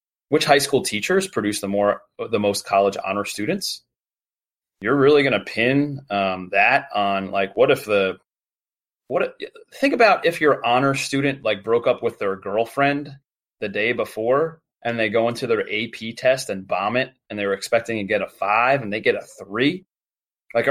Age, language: 30-49, English